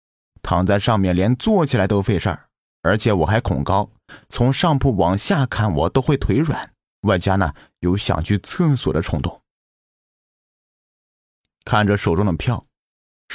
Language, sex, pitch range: Chinese, male, 85-120 Hz